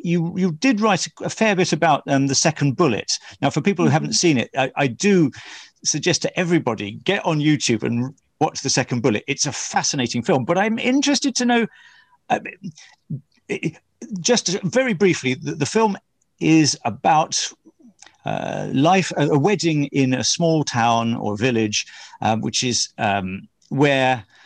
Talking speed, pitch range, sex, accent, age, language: 165 wpm, 130-195 Hz, male, British, 40-59, English